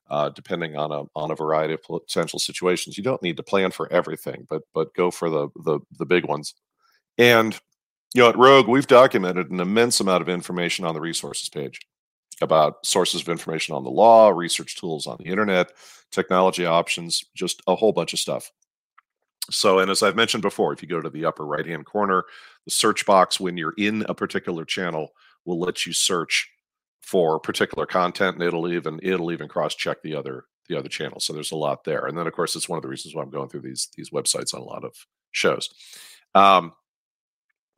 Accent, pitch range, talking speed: American, 80-95 Hz, 205 wpm